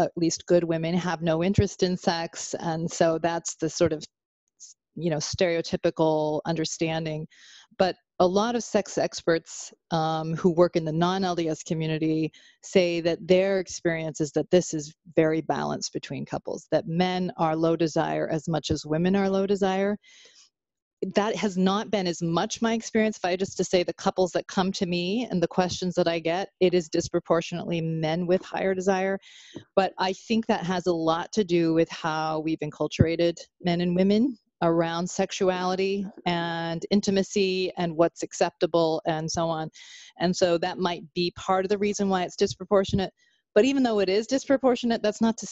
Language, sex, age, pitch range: English, female, 30-49, 165-195 Hz